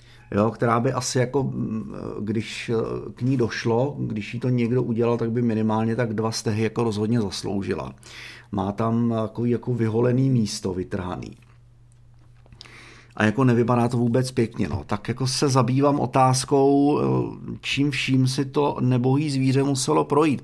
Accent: native